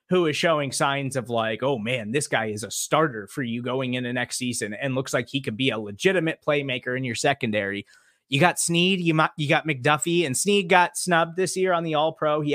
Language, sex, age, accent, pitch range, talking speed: English, male, 20-39, American, 130-175 Hz, 240 wpm